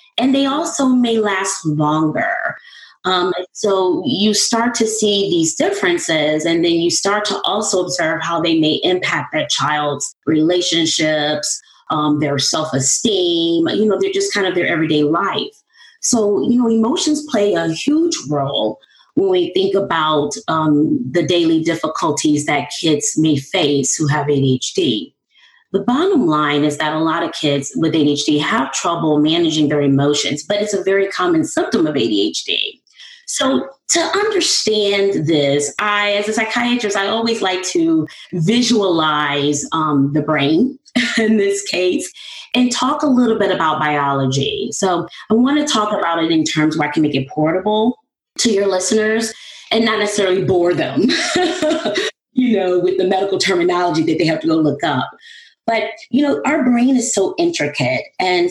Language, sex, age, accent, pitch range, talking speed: English, female, 30-49, American, 155-245 Hz, 160 wpm